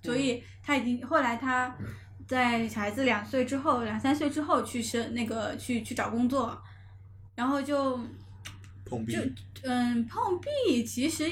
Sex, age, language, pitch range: female, 10-29, Chinese, 220-270 Hz